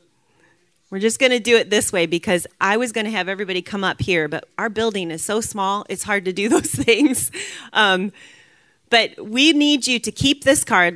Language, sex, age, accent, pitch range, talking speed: English, female, 30-49, American, 165-215 Hz, 215 wpm